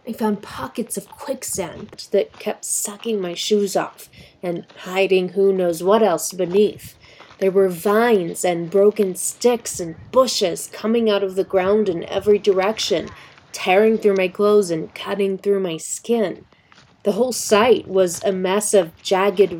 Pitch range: 185-220 Hz